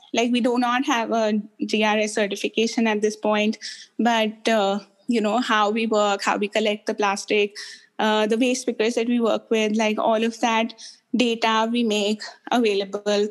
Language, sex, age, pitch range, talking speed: English, female, 20-39, 205-235 Hz, 175 wpm